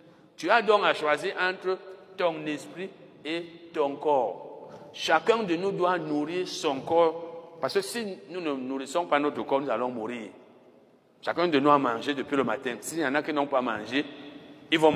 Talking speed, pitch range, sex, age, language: 195 wpm, 140-175 Hz, male, 60-79, French